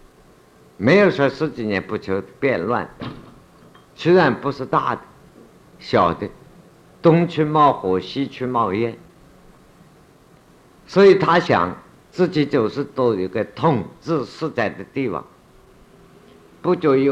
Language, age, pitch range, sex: Chinese, 50-69, 115-165 Hz, male